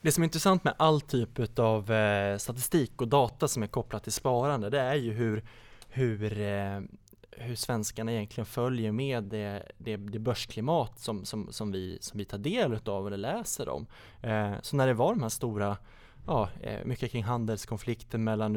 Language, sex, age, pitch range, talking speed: Swedish, male, 20-39, 105-120 Hz, 175 wpm